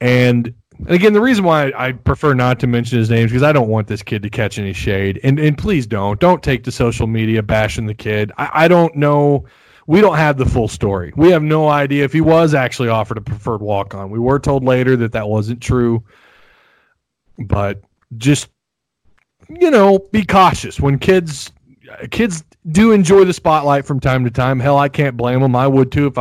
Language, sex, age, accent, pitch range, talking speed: English, male, 30-49, American, 115-145 Hz, 215 wpm